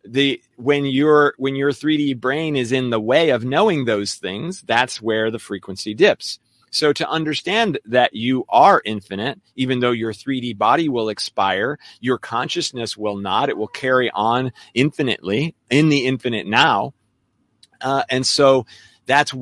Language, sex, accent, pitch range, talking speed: English, male, American, 115-140 Hz, 160 wpm